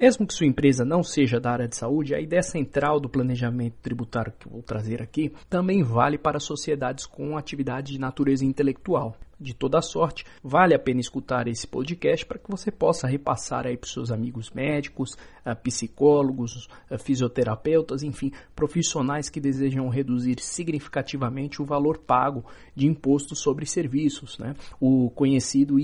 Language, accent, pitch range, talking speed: Portuguese, Brazilian, 125-160 Hz, 155 wpm